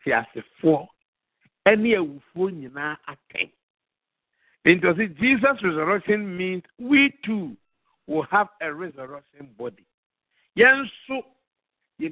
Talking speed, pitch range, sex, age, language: 125 wpm, 160-240 Hz, male, 50-69, English